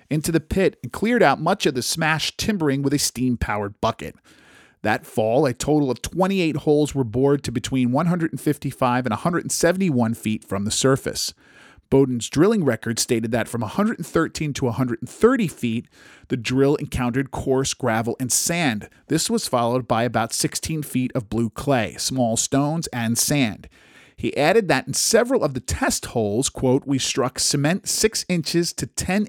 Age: 40-59